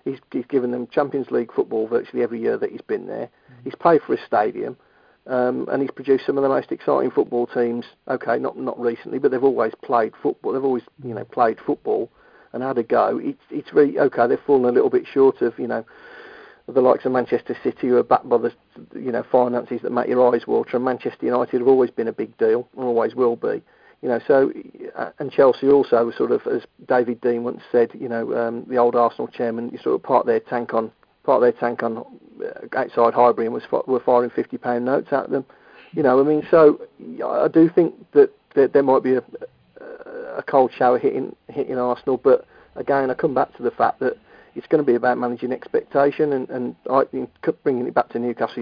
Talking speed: 220 wpm